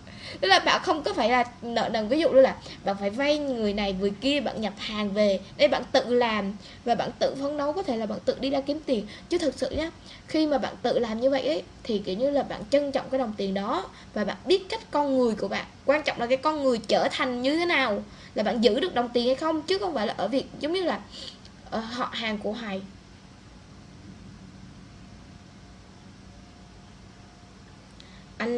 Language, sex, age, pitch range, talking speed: Vietnamese, female, 10-29, 195-270 Hz, 225 wpm